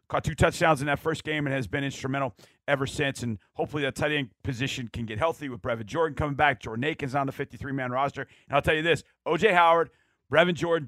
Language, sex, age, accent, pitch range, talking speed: English, male, 40-59, American, 135-185 Hz, 230 wpm